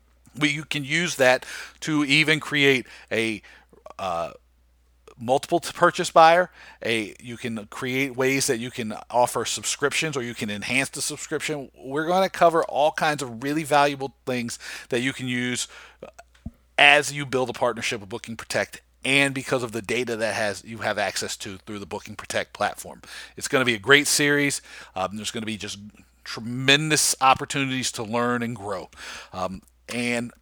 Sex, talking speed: male, 175 wpm